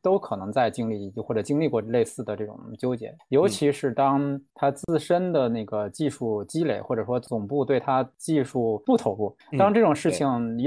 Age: 20-39